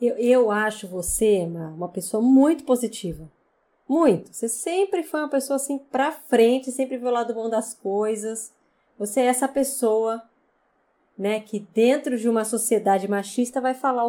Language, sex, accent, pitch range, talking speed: Portuguese, female, Brazilian, 195-250 Hz, 160 wpm